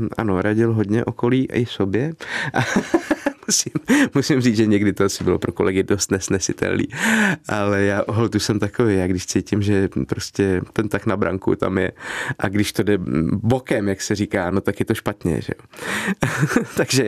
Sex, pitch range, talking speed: male, 100-115 Hz, 175 wpm